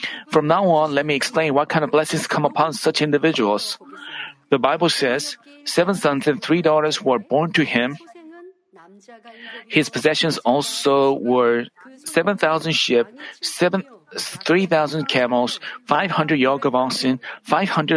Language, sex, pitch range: Korean, male, 140-195 Hz